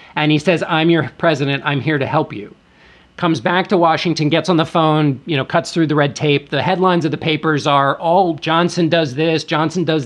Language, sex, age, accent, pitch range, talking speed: English, male, 40-59, American, 140-170 Hz, 235 wpm